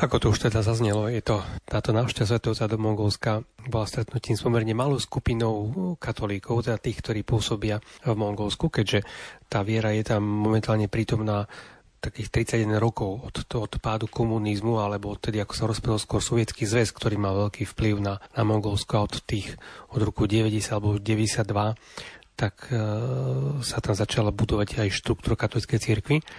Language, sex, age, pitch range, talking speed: Slovak, male, 30-49, 105-120 Hz, 165 wpm